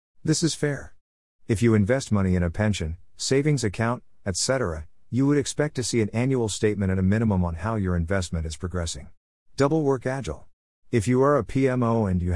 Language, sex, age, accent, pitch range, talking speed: English, male, 50-69, American, 90-115 Hz, 195 wpm